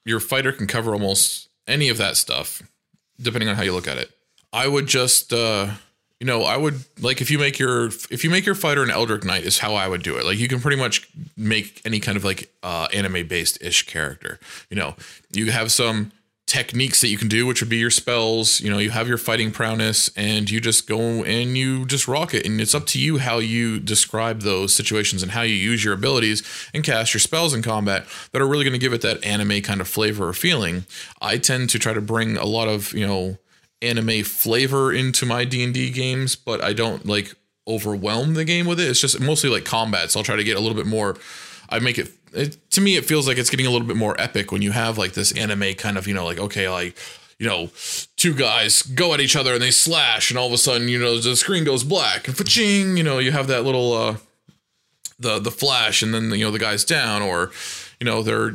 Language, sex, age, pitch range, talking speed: English, male, 20-39, 105-130 Hz, 245 wpm